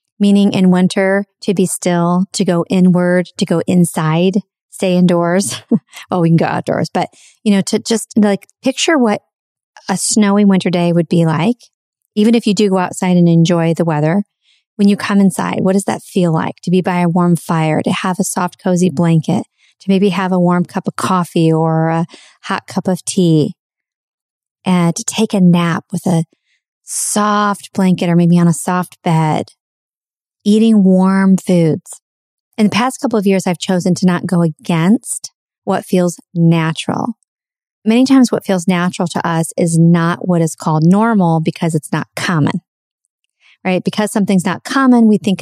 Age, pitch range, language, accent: 30-49, 170-205 Hz, English, American